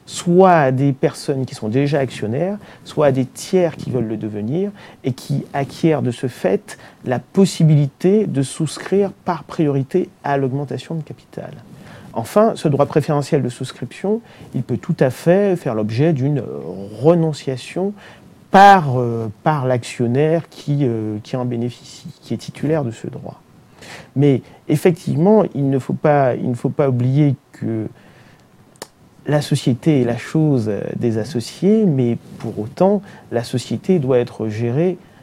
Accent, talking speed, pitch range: French, 150 wpm, 125-175 Hz